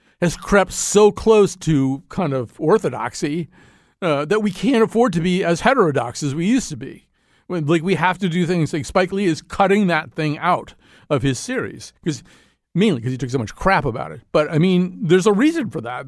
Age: 50-69